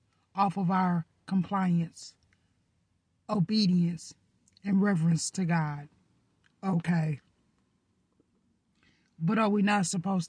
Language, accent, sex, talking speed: English, American, female, 85 wpm